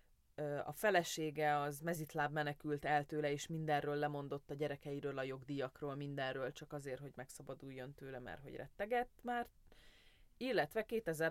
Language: Hungarian